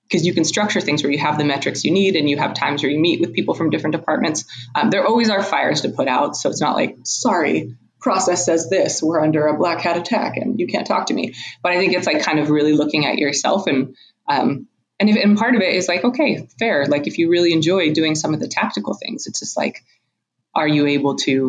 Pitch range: 150-220 Hz